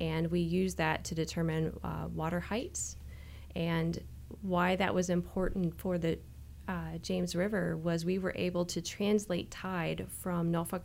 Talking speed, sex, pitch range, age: 155 wpm, female, 165-190 Hz, 30-49